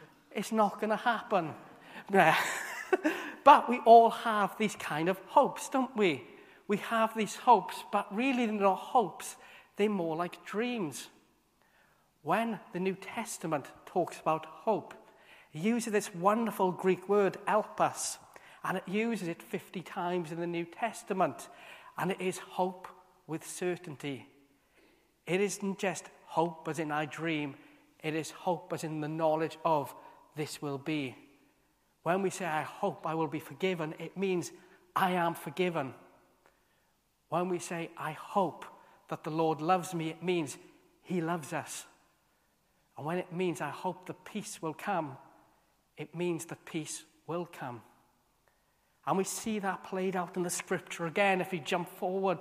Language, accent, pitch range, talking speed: English, British, 160-200 Hz, 155 wpm